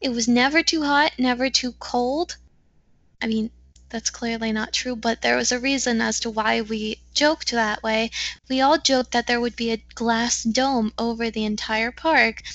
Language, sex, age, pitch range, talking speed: English, female, 10-29, 230-275 Hz, 190 wpm